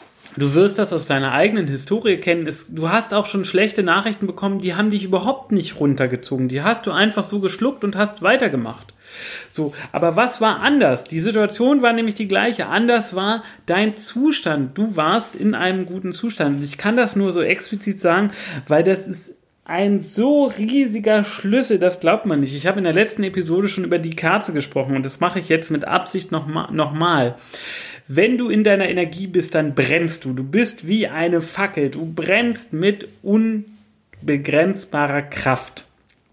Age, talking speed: 30-49, 180 wpm